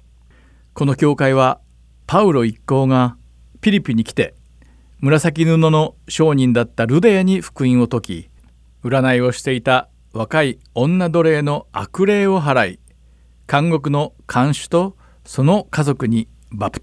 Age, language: 50-69, Japanese